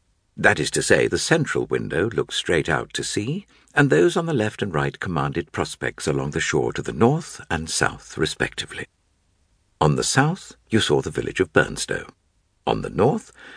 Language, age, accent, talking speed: English, 60-79, British, 185 wpm